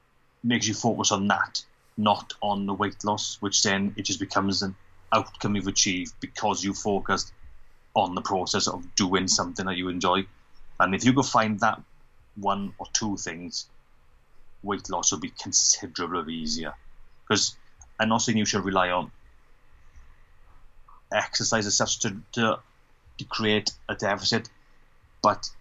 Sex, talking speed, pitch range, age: male, 150 wpm, 90-105 Hz, 30-49